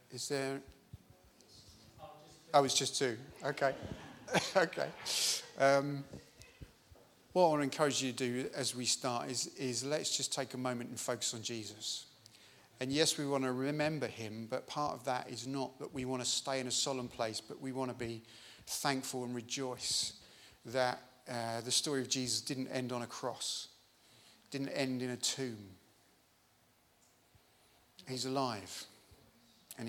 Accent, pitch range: British, 115-135 Hz